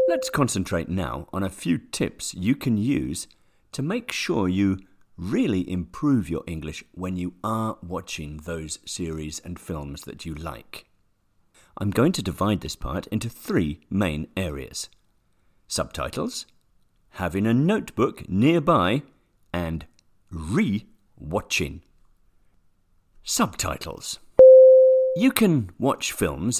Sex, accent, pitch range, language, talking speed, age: male, British, 85-110 Hz, English, 115 wpm, 50-69